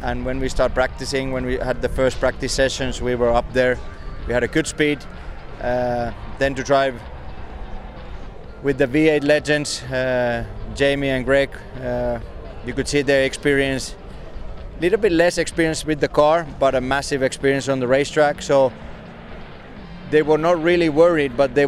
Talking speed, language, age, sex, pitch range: 170 wpm, English, 30-49, male, 130-150 Hz